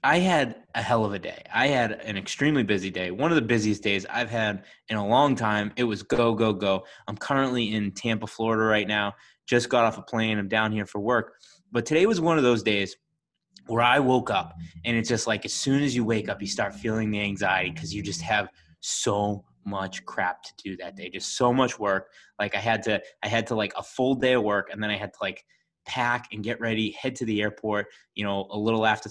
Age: 20-39